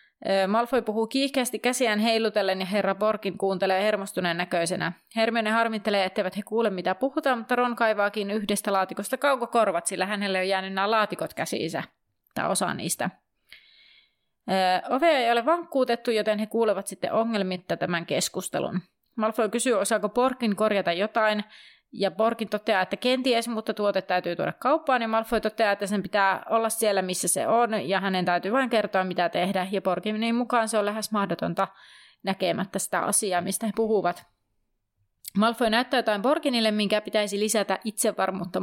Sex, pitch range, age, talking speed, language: female, 190-235 Hz, 30-49, 155 wpm, Finnish